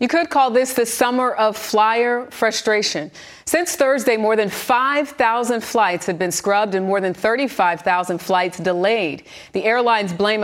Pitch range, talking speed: 185-235 Hz, 155 wpm